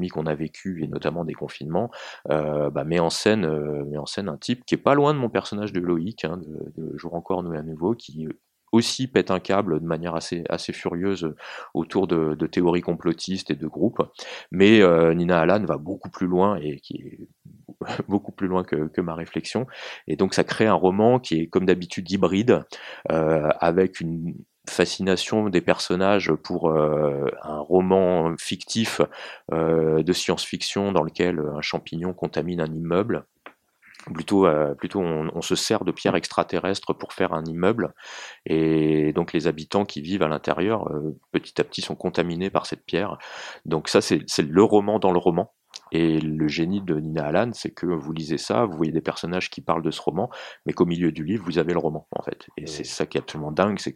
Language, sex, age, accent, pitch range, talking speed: French, male, 30-49, French, 80-95 Hz, 200 wpm